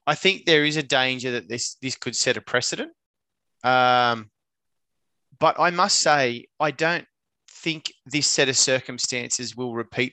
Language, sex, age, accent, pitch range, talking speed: English, male, 20-39, Australian, 115-135 Hz, 160 wpm